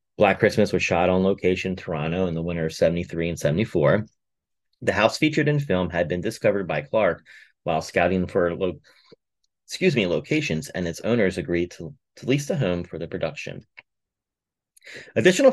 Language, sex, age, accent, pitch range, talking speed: English, male, 30-49, American, 85-100 Hz, 180 wpm